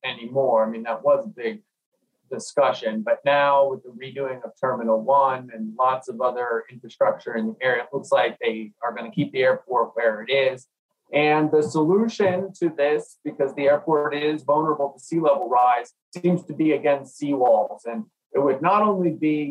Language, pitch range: English, 130-175 Hz